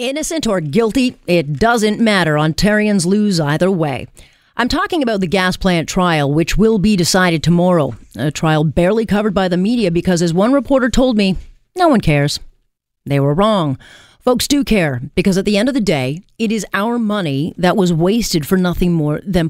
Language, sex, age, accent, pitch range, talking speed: English, female, 40-59, American, 150-215 Hz, 190 wpm